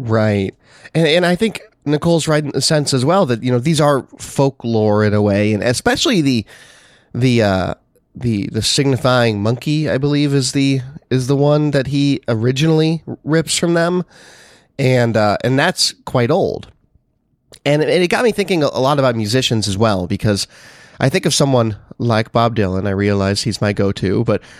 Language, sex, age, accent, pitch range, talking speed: English, male, 30-49, American, 105-140 Hz, 190 wpm